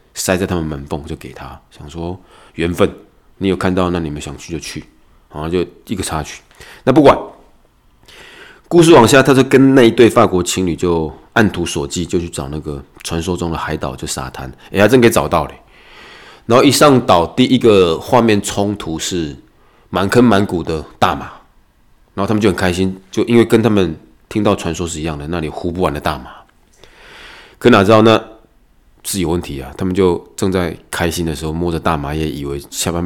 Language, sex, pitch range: Chinese, male, 80-110 Hz